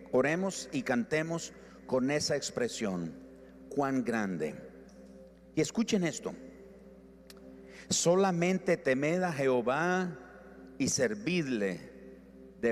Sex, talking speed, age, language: male, 85 wpm, 50-69, Spanish